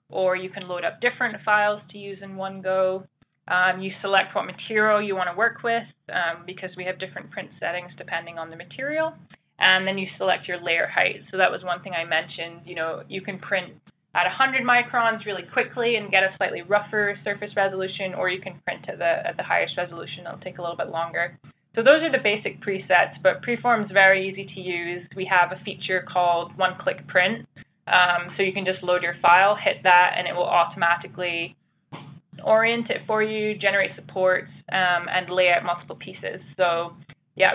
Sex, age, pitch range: female, 20-39, 175-205 Hz